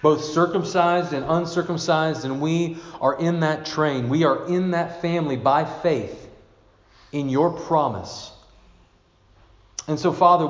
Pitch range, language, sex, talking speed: 115-170 Hz, English, male, 130 wpm